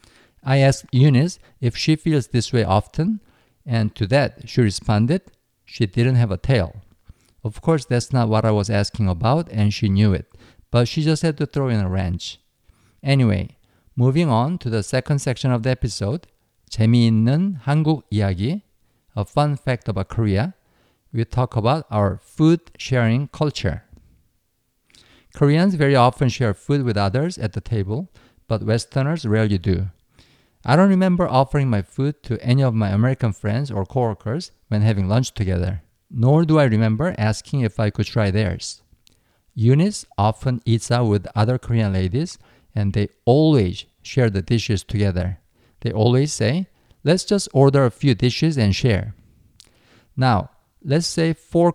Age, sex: 50-69, male